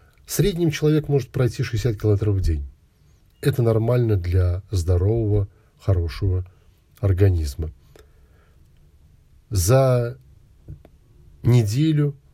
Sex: male